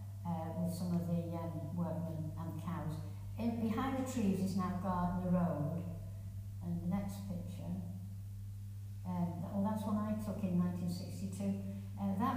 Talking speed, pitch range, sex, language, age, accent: 155 wpm, 90-100 Hz, female, English, 60-79, British